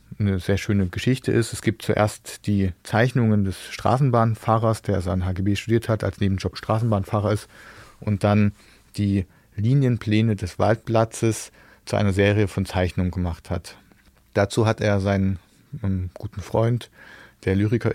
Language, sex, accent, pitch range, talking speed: German, male, German, 100-115 Hz, 140 wpm